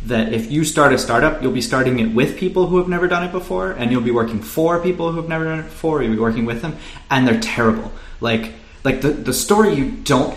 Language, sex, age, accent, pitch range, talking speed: English, male, 30-49, American, 115-145 Hz, 260 wpm